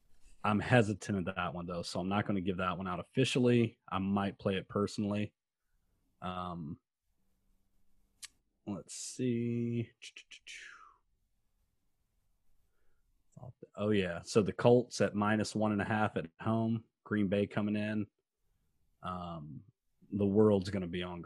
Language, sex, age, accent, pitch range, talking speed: English, male, 30-49, American, 95-115 Hz, 135 wpm